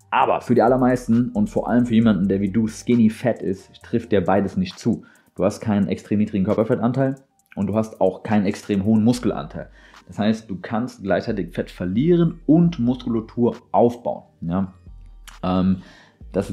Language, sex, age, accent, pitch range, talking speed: German, male, 30-49, German, 95-115 Hz, 165 wpm